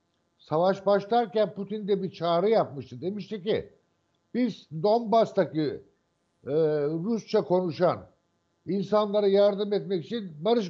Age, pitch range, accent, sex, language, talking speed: 60-79, 175-220 Hz, native, male, Turkish, 105 wpm